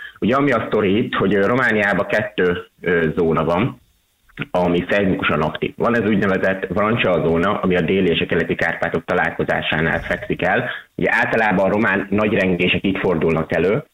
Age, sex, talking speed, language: 30-49, male, 165 wpm, Hungarian